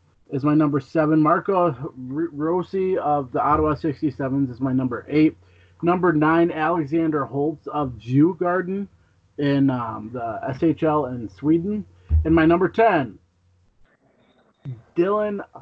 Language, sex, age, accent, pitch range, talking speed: English, male, 30-49, American, 115-155 Hz, 125 wpm